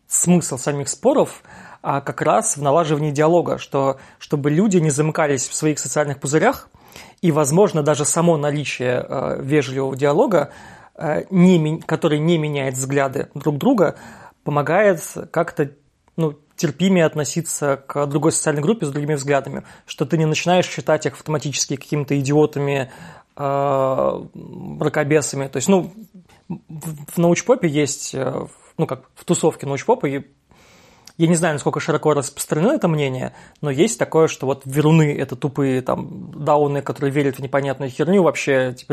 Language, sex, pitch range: Russian, male, 140-160 Hz